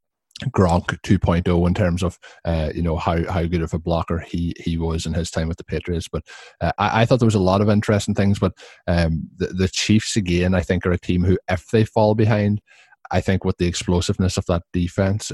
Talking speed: 230 wpm